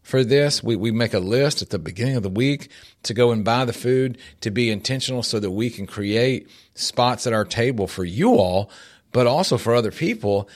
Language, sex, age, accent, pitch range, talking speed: English, male, 40-59, American, 110-140 Hz, 220 wpm